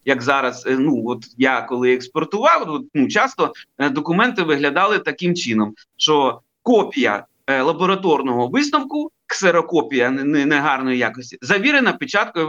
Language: Ukrainian